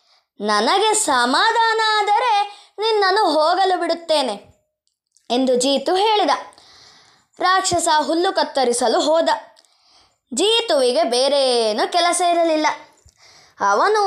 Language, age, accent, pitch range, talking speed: Kannada, 20-39, native, 295-415 Hz, 75 wpm